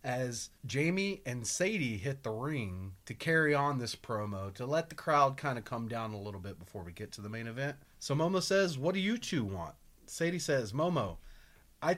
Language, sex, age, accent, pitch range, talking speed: English, male, 30-49, American, 110-165 Hz, 210 wpm